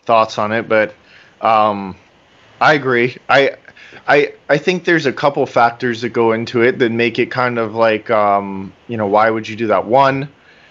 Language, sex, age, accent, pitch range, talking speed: English, male, 20-39, American, 110-135 Hz, 190 wpm